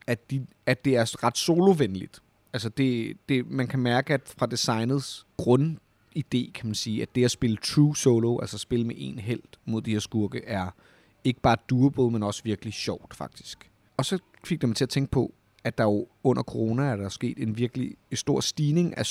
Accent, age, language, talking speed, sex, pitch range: native, 30-49, Danish, 205 wpm, male, 115-155 Hz